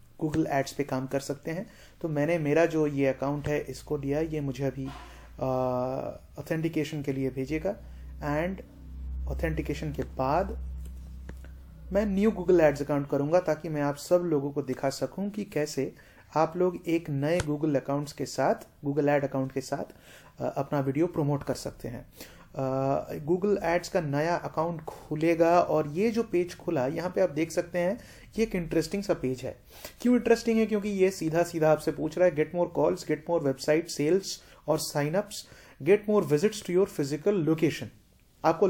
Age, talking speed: 30-49, 180 wpm